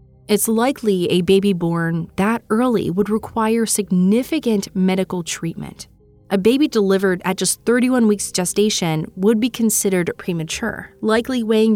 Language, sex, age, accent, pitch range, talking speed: English, female, 20-39, American, 165-215 Hz, 135 wpm